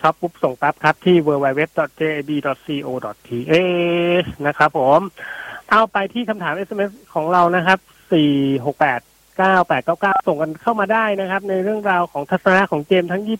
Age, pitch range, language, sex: 30-49, 140-180 Hz, Thai, male